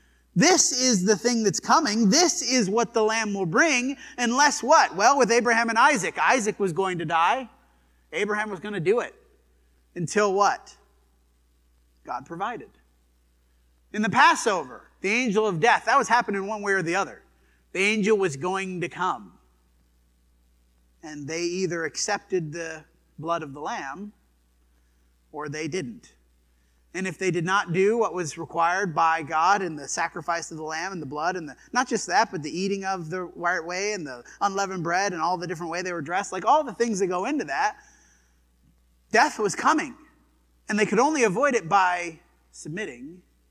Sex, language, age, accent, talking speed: male, English, 30-49, American, 180 wpm